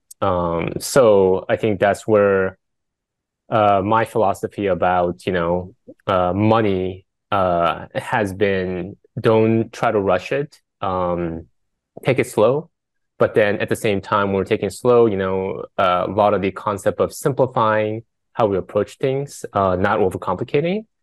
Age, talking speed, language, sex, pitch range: 20-39, 155 wpm, English, male, 90-115 Hz